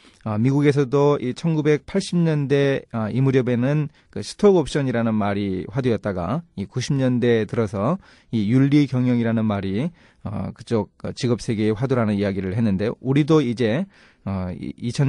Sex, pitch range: male, 105-150 Hz